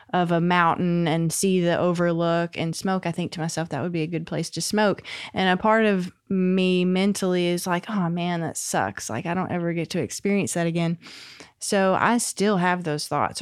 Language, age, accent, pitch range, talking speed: English, 20-39, American, 155-180 Hz, 215 wpm